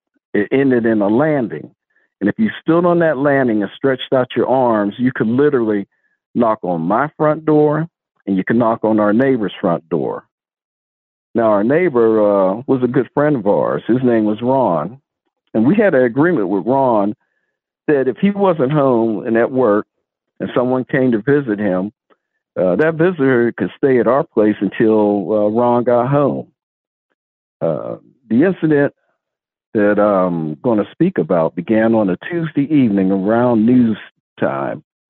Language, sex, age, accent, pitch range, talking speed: English, male, 50-69, American, 105-145 Hz, 170 wpm